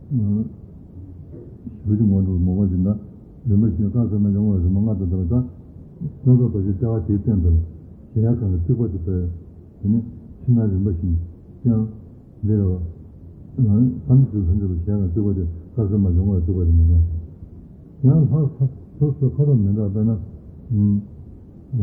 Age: 60-79